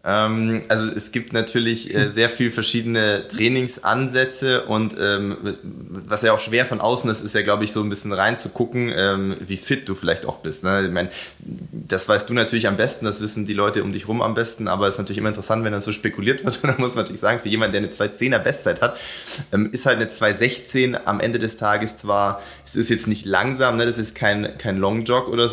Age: 20-39